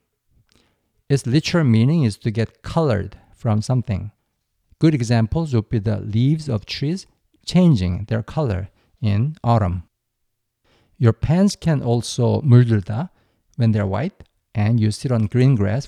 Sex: male